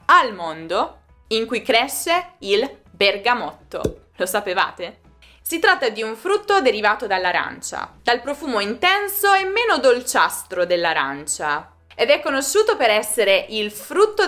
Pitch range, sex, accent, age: 200-300 Hz, female, native, 20-39